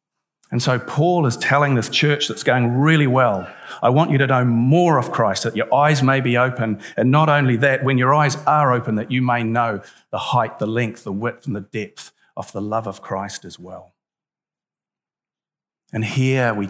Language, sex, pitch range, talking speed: English, male, 105-135 Hz, 205 wpm